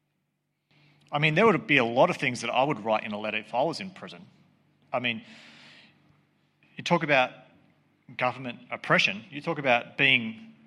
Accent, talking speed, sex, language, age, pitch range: Australian, 180 wpm, male, English, 30-49, 115-160 Hz